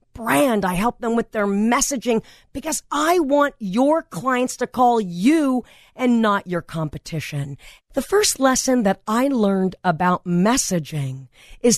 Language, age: English, 40-59